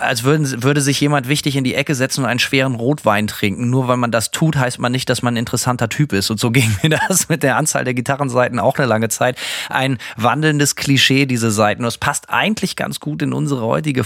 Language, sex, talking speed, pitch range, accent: German, male, 235 wpm, 120-145 Hz, German